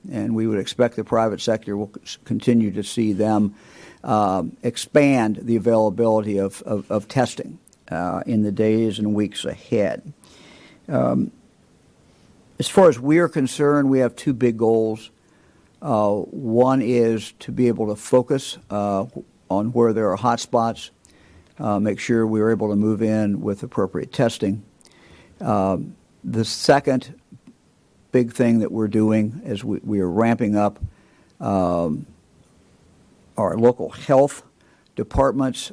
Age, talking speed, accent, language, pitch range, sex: 50-69, 145 wpm, American, English, 105-120 Hz, male